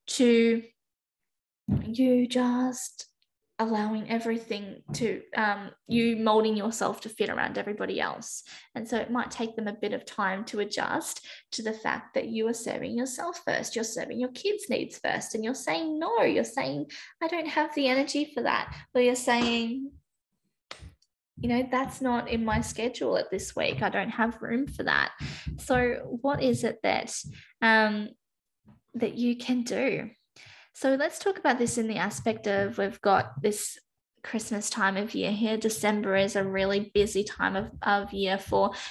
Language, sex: English, female